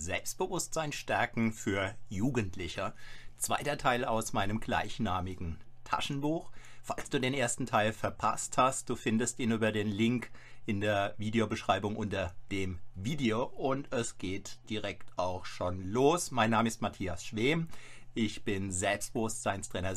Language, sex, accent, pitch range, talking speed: German, male, German, 105-130 Hz, 130 wpm